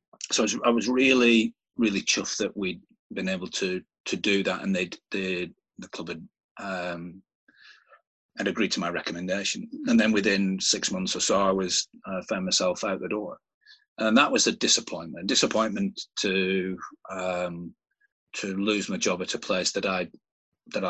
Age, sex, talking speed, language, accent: 30-49, male, 170 wpm, English, British